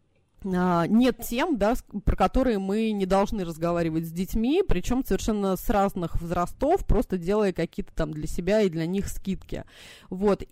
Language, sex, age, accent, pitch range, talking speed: Russian, female, 20-39, native, 195-235 Hz, 155 wpm